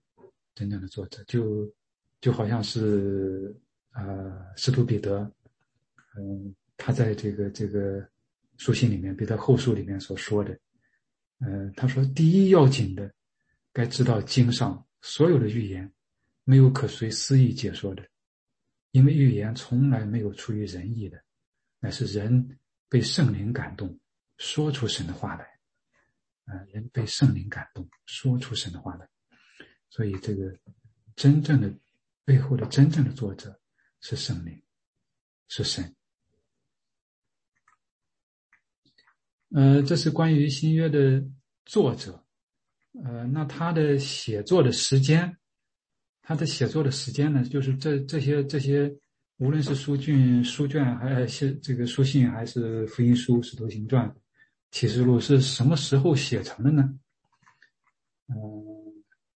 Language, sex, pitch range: English, male, 105-140 Hz